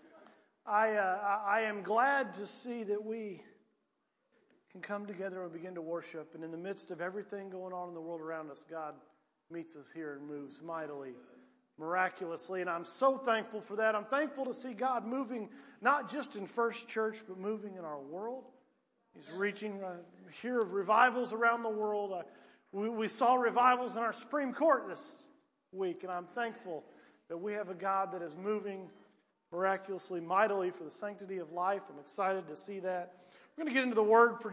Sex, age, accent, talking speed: male, 40-59, American, 190 wpm